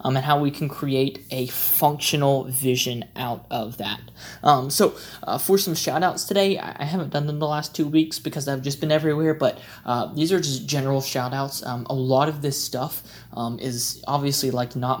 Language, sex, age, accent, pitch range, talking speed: English, male, 20-39, American, 130-155 Hz, 205 wpm